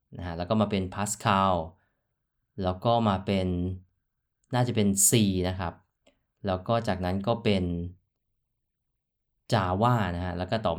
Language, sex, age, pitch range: Thai, male, 20-39, 95-115 Hz